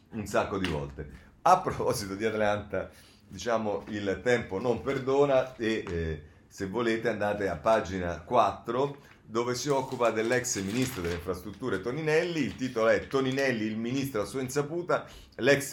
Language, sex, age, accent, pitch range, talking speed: Italian, male, 30-49, native, 90-130 Hz, 150 wpm